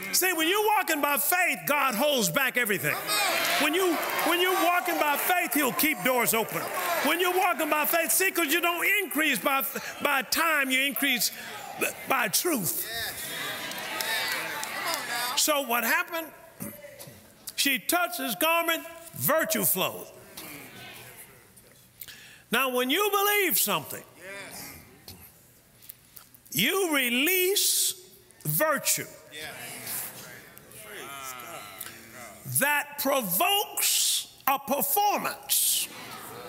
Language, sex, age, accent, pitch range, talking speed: English, male, 50-69, American, 240-340 Hz, 95 wpm